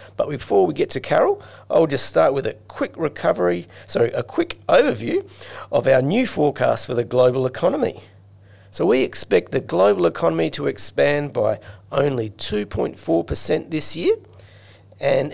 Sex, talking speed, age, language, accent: male, 155 wpm, 40-59, English, Australian